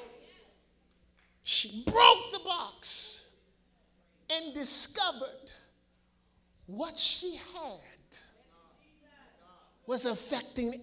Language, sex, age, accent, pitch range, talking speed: English, male, 50-69, American, 235-345 Hz, 60 wpm